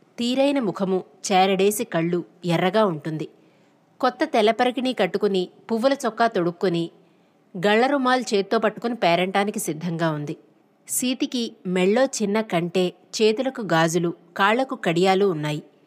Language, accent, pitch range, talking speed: Telugu, native, 185-245 Hz, 105 wpm